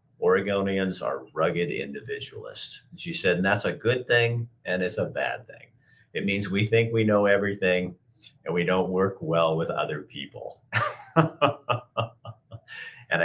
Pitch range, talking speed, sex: 90-110 Hz, 145 wpm, male